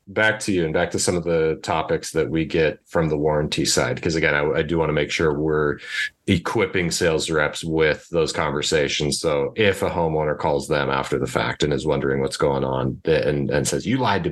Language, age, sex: English, 30-49, male